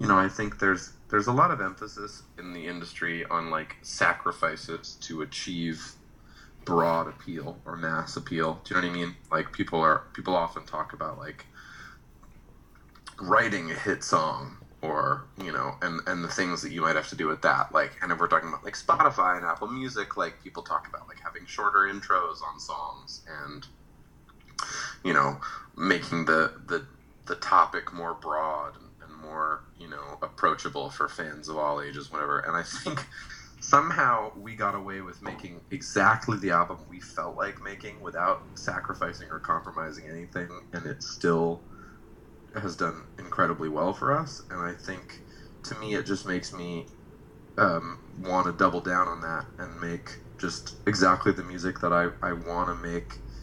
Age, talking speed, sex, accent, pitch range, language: 30-49, 175 wpm, male, American, 80-95 Hz, English